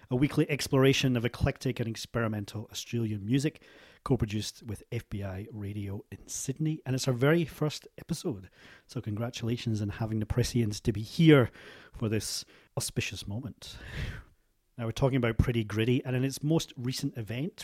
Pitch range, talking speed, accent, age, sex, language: 110-135 Hz, 155 wpm, British, 40-59, male, English